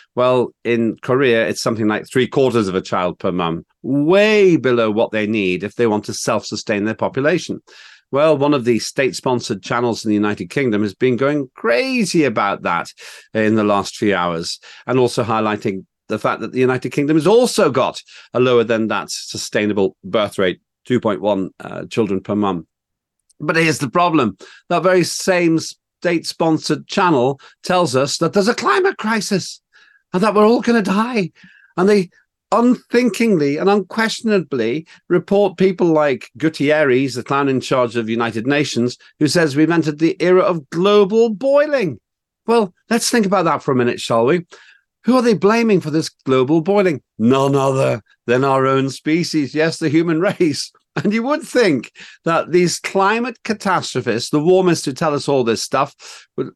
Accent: British